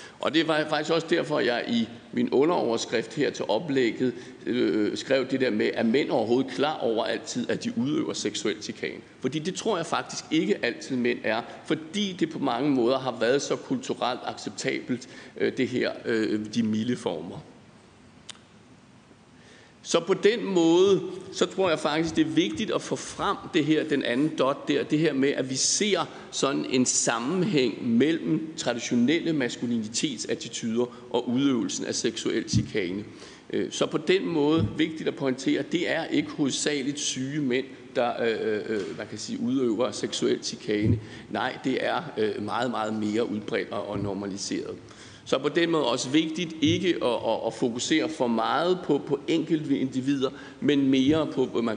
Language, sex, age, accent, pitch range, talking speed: Danish, male, 60-79, native, 125-170 Hz, 170 wpm